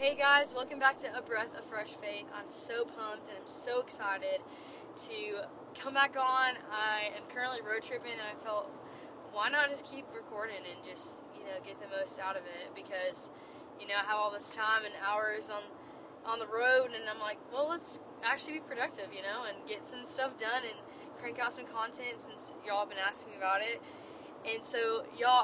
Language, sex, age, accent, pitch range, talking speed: English, female, 10-29, American, 200-280 Hz, 210 wpm